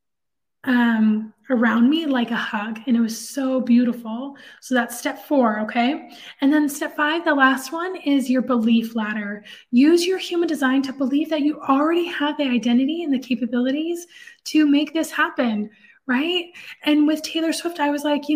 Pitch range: 235-290 Hz